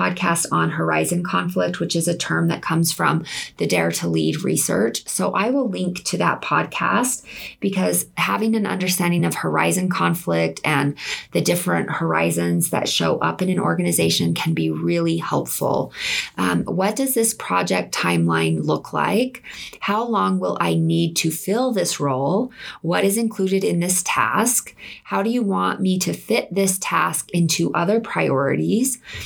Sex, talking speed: female, 160 wpm